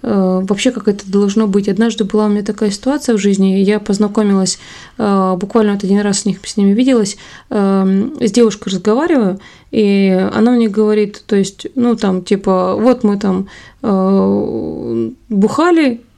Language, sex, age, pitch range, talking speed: Russian, female, 20-39, 195-230 Hz, 145 wpm